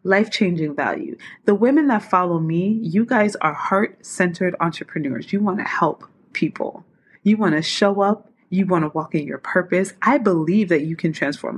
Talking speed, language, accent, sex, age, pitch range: 180 wpm, English, American, female, 20-39, 175-225 Hz